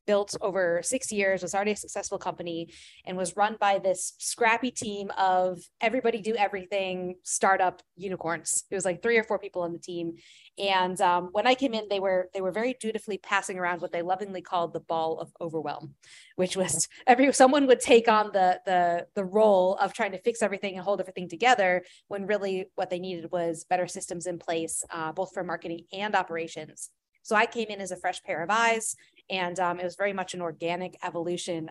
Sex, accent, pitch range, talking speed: female, American, 175-210 Hz, 205 wpm